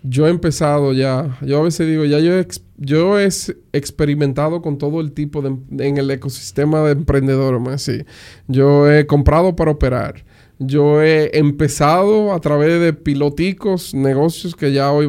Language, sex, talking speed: Spanish, male, 165 wpm